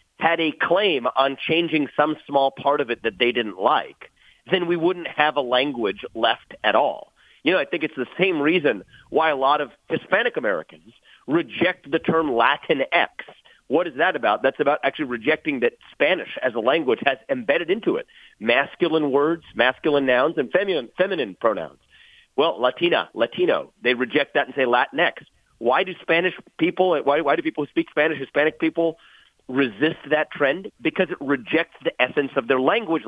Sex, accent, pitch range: male, American, 140-185 Hz